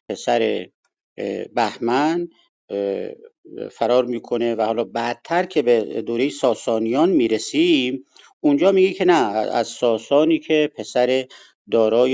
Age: 50-69